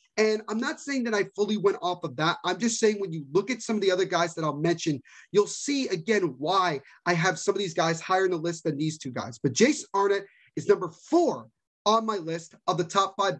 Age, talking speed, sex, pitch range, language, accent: 30-49, 255 wpm, male, 165-215 Hz, English, American